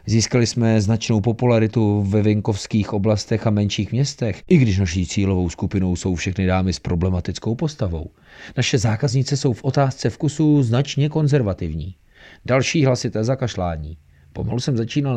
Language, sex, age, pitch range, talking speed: Czech, male, 40-59, 95-135 Hz, 140 wpm